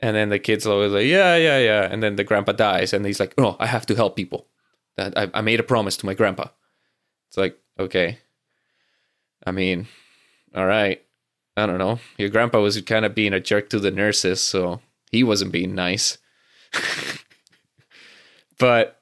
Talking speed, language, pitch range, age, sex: 190 wpm, English, 105-125 Hz, 20-39, male